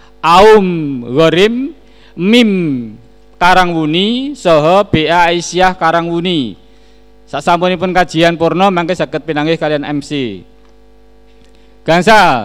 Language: Indonesian